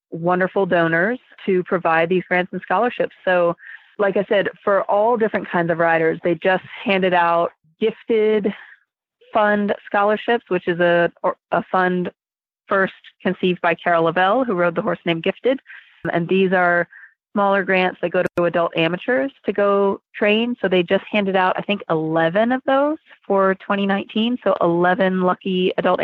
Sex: female